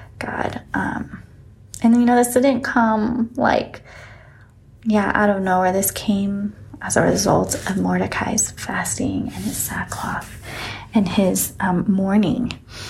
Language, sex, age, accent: English, female, 20-39, American